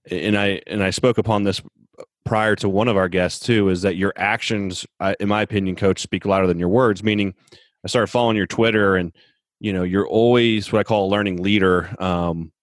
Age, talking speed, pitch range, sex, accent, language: 30-49, 220 wpm, 90-105 Hz, male, American, English